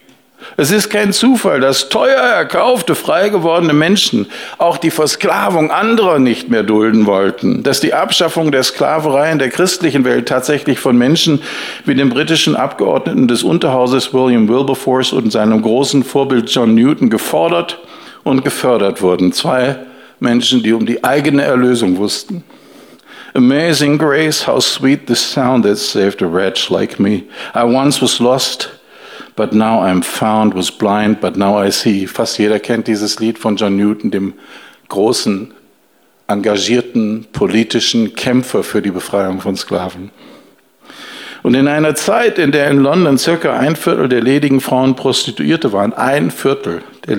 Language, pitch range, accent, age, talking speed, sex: German, 110-150 Hz, German, 60-79, 150 wpm, male